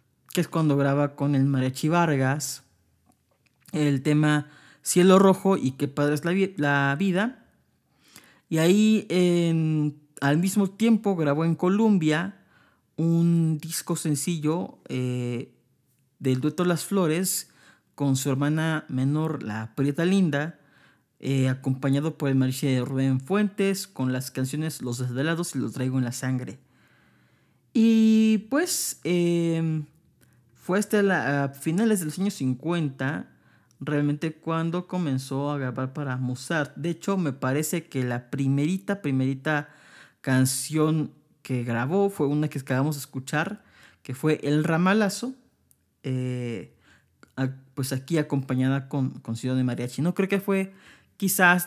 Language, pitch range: Spanish, 130-175 Hz